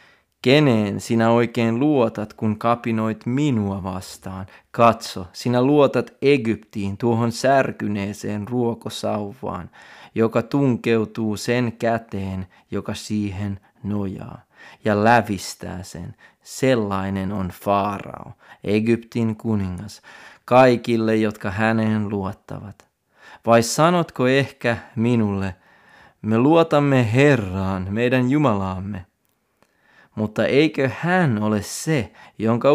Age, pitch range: 30-49, 105-125 Hz